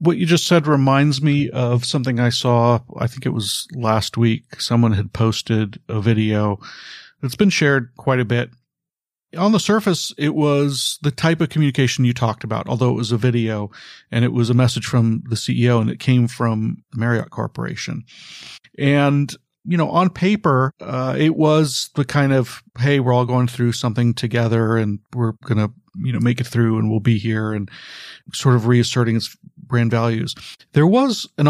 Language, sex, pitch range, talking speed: English, male, 115-140 Hz, 190 wpm